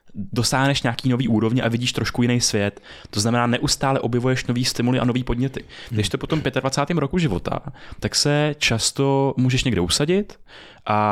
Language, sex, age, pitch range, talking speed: Czech, male, 20-39, 110-140 Hz, 175 wpm